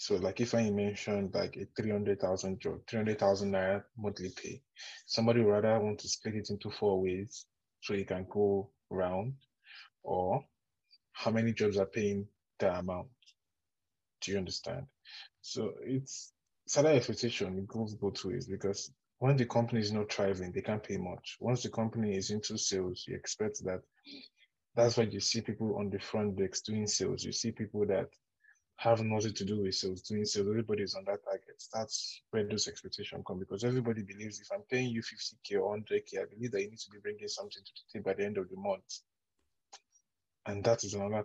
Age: 20-39